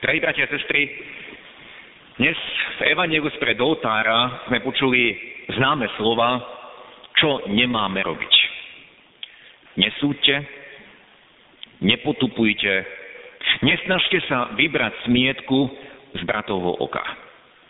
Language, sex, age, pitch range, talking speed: Slovak, male, 50-69, 125-170 Hz, 85 wpm